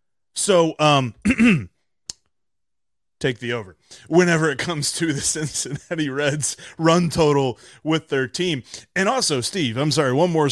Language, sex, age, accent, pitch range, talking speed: English, male, 30-49, American, 125-180 Hz, 135 wpm